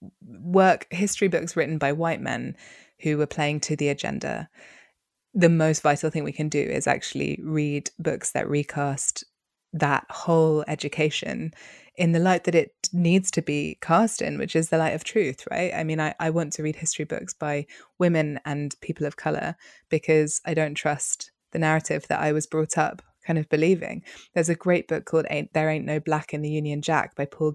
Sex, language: female, English